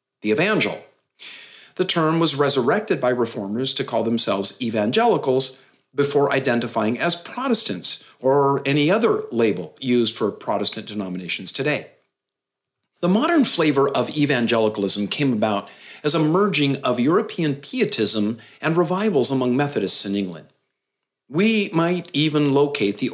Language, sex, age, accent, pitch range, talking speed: English, male, 50-69, American, 115-155 Hz, 125 wpm